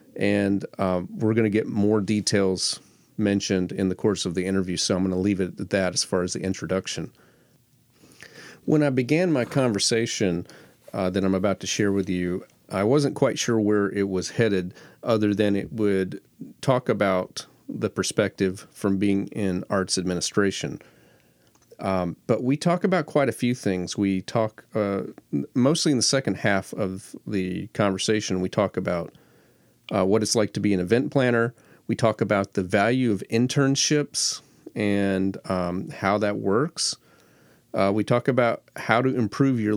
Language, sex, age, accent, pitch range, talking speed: English, male, 40-59, American, 95-115 Hz, 170 wpm